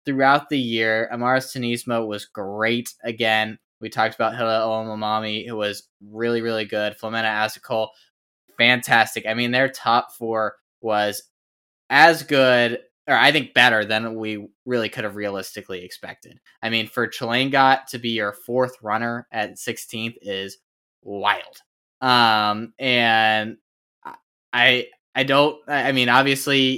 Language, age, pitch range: English, 10-29, 105-130 Hz